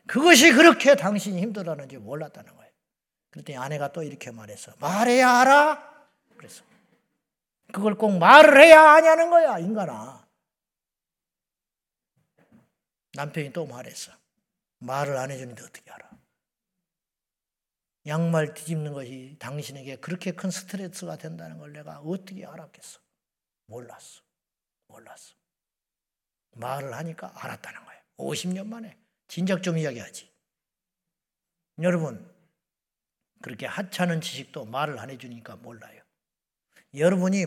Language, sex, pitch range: Korean, male, 140-195 Hz